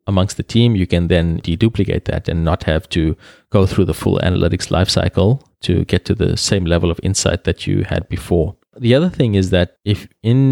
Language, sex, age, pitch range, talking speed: English, male, 20-39, 85-105 Hz, 210 wpm